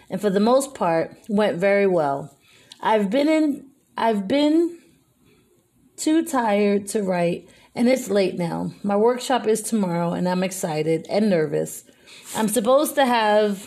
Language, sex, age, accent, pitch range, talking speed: English, female, 30-49, American, 180-235 Hz, 150 wpm